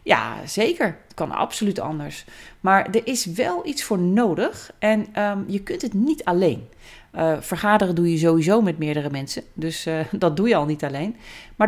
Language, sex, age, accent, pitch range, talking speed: Dutch, female, 40-59, Dutch, 170-240 Hz, 185 wpm